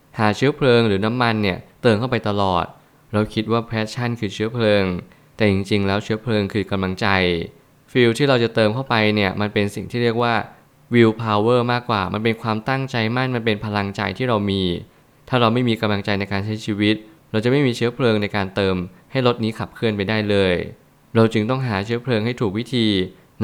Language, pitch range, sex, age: Thai, 105-125 Hz, male, 20-39